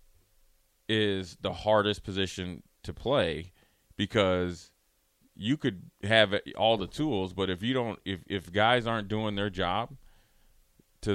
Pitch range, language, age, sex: 90-110 Hz, English, 30-49, male